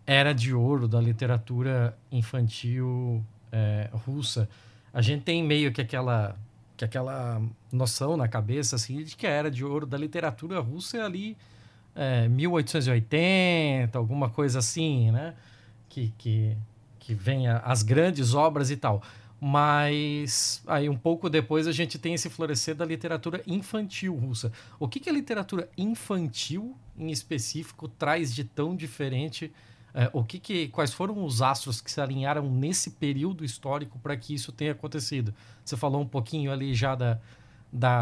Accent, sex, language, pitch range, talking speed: Brazilian, male, Portuguese, 115-150 Hz, 155 wpm